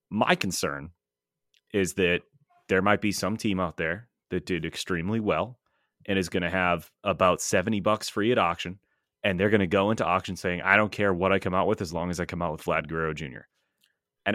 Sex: male